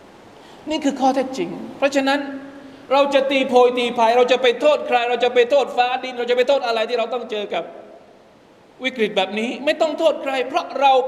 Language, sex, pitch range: Thai, male, 215-285 Hz